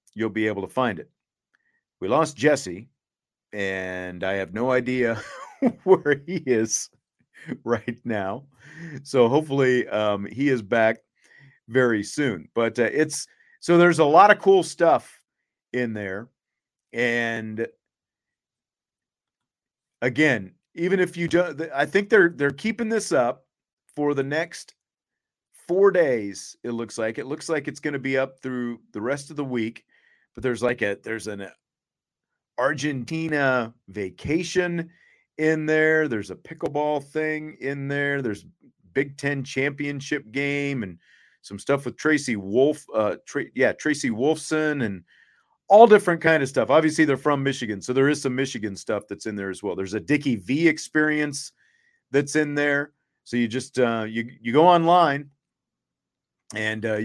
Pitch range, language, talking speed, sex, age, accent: 115-155 Hz, English, 150 wpm, male, 40-59, American